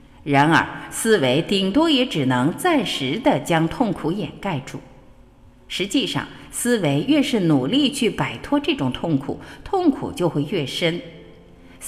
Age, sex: 50-69, female